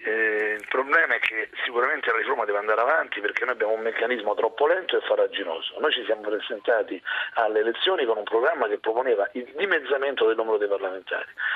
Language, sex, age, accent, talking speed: Italian, male, 40-59, native, 190 wpm